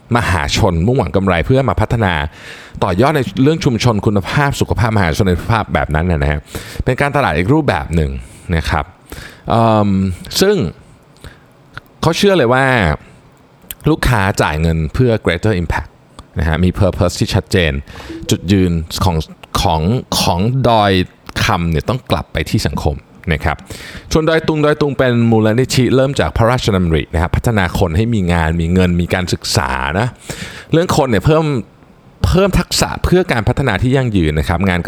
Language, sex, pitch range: Thai, male, 90-130 Hz